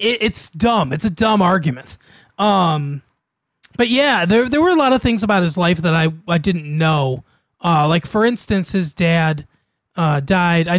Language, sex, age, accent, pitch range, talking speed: English, male, 30-49, American, 155-200 Hz, 185 wpm